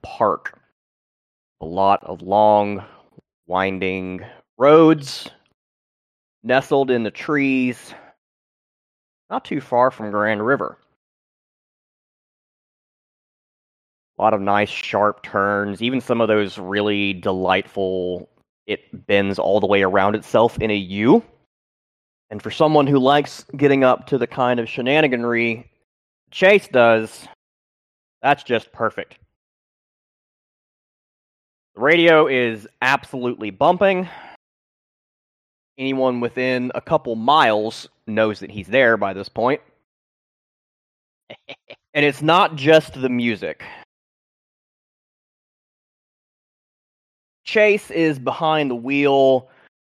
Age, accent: 20-39, American